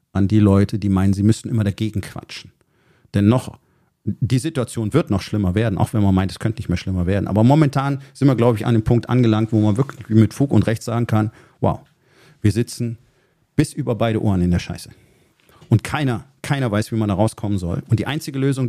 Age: 40-59